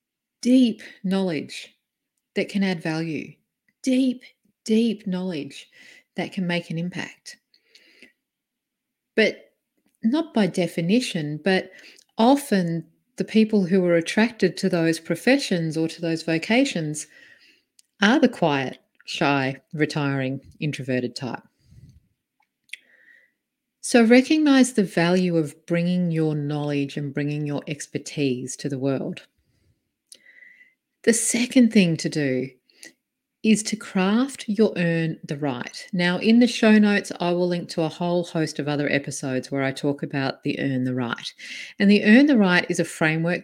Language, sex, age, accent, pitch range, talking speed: English, female, 40-59, Australian, 155-225 Hz, 135 wpm